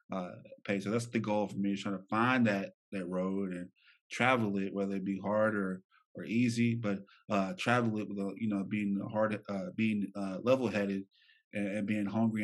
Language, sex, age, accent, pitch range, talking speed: English, male, 20-39, American, 100-110 Hz, 205 wpm